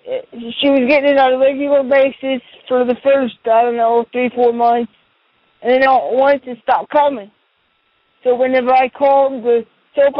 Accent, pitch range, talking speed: American, 230-265 Hz, 175 wpm